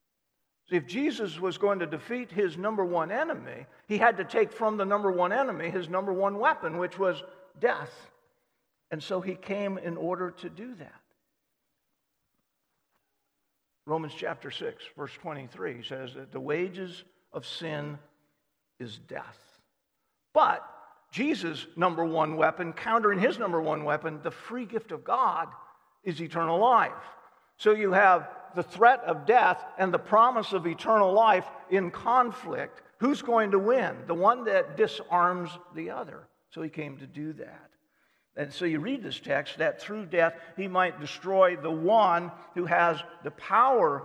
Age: 50-69